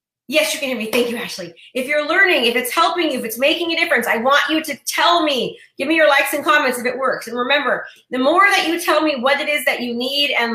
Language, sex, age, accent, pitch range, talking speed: English, female, 30-49, American, 230-285 Hz, 285 wpm